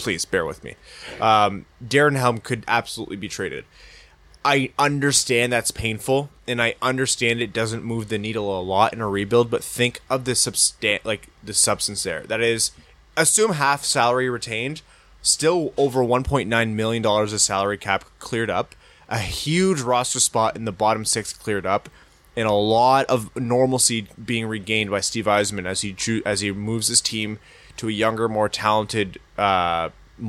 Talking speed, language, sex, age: 170 wpm, English, male, 20-39